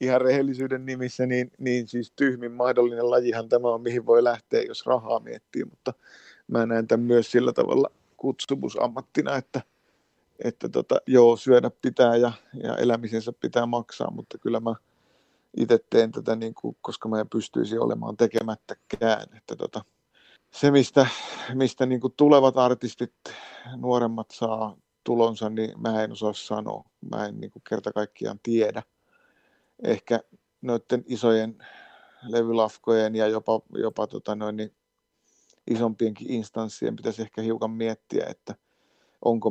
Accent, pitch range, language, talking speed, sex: Finnish, 110-120 Hz, English, 135 wpm, male